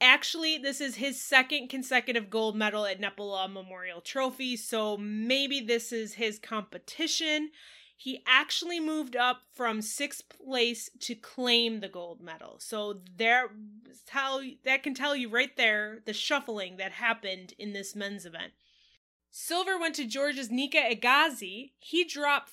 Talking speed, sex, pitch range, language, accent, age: 145 wpm, female, 215-280 Hz, English, American, 20-39